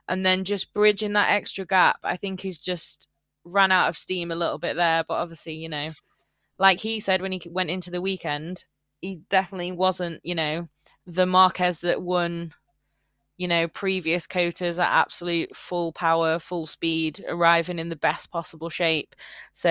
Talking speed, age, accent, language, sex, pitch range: 175 wpm, 20-39, British, English, female, 170-195 Hz